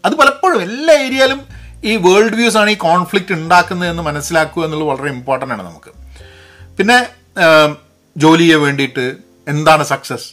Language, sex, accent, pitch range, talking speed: Malayalam, male, native, 130-185 Hz, 130 wpm